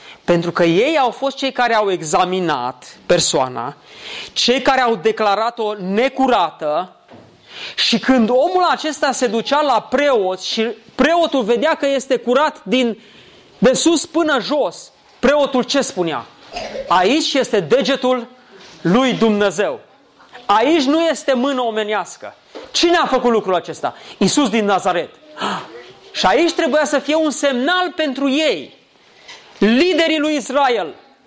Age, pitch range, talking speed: 30-49, 210-280 Hz, 130 wpm